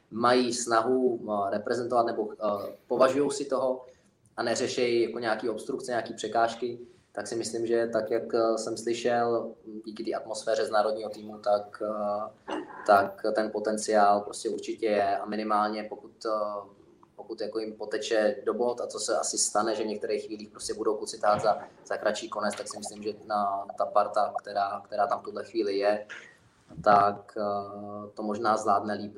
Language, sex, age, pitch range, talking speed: Czech, male, 20-39, 105-120 Hz, 160 wpm